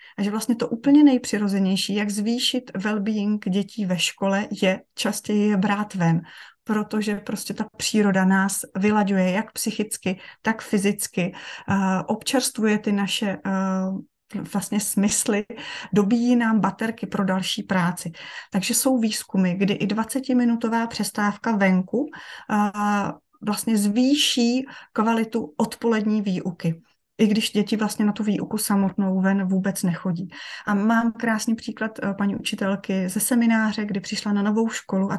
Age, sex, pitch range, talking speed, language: 30-49, female, 195-230 Hz, 130 wpm, Czech